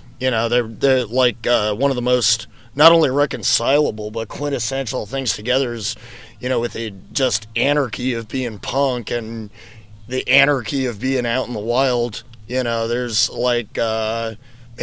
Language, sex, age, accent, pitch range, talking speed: English, male, 30-49, American, 115-130 Hz, 165 wpm